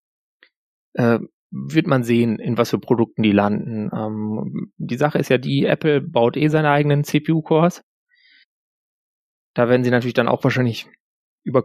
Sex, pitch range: male, 115-135 Hz